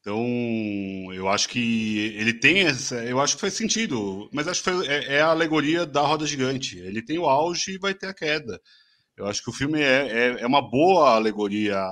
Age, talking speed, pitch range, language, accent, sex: 30-49, 205 wpm, 105-155 Hz, Portuguese, Brazilian, male